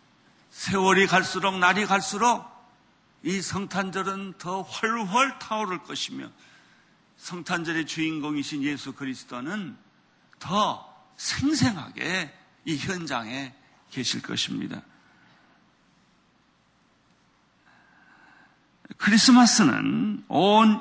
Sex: male